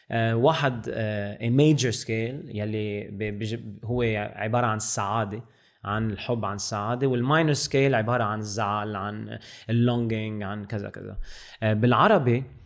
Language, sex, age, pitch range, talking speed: Arabic, male, 20-39, 110-135 Hz, 120 wpm